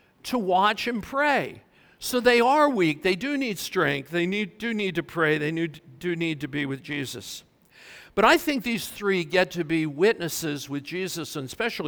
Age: 50-69